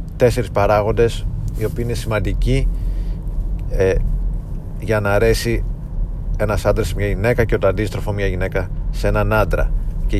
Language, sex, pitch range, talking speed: Greek, male, 95-115 Hz, 135 wpm